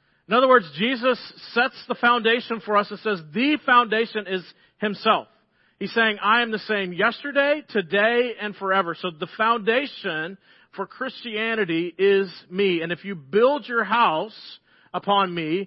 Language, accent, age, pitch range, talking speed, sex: English, American, 40-59, 175-220 Hz, 155 wpm, male